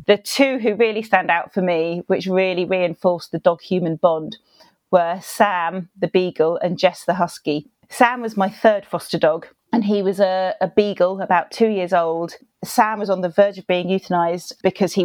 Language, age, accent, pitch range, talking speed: English, 40-59, British, 170-205 Hz, 195 wpm